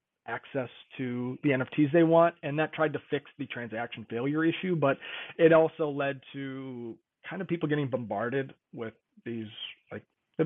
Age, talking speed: 30-49, 165 wpm